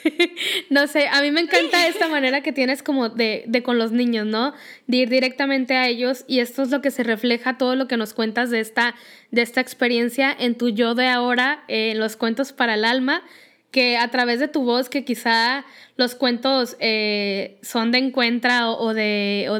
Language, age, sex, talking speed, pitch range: Spanish, 10-29, female, 210 wpm, 235-280 Hz